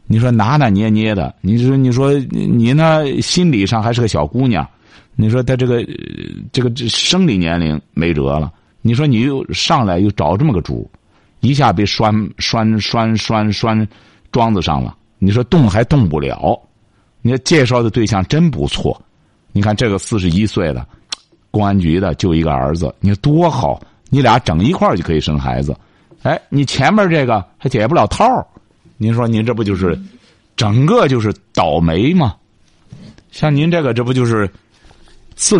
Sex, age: male, 50-69